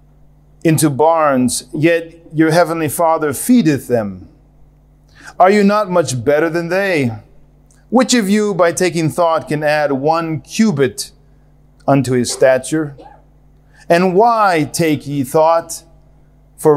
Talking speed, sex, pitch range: 120 wpm, male, 140-180 Hz